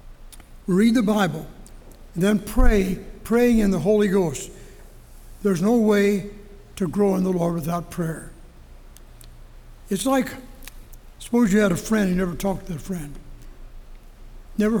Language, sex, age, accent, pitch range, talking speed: English, male, 60-79, American, 185-220 Hz, 140 wpm